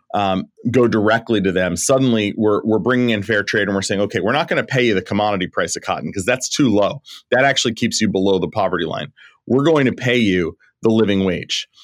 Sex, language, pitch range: male, English, 105-125 Hz